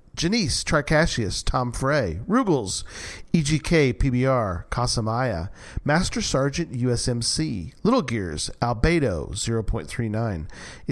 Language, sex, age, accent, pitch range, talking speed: English, male, 40-59, American, 105-155 Hz, 80 wpm